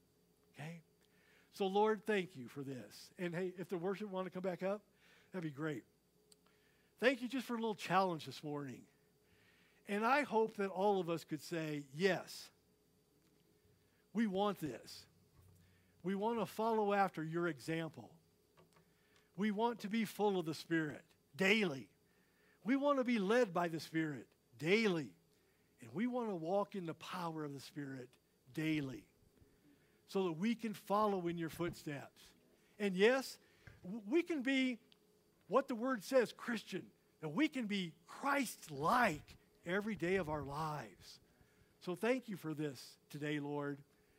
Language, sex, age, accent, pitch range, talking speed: English, male, 50-69, American, 155-210 Hz, 155 wpm